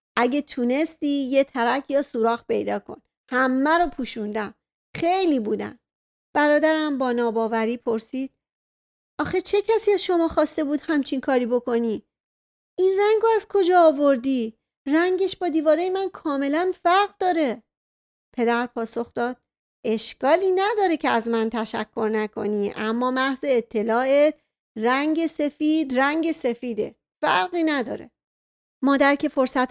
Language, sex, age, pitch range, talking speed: Persian, female, 40-59, 235-305 Hz, 125 wpm